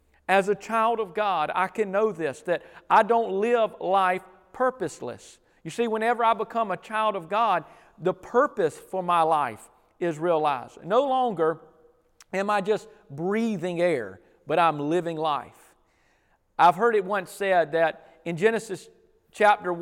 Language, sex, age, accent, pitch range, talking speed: English, male, 40-59, American, 165-215 Hz, 155 wpm